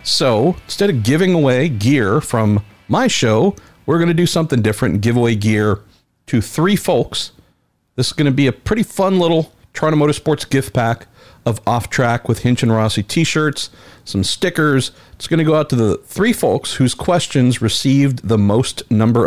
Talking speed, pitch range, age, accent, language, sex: 185 wpm, 105-130 Hz, 50-69, American, English, male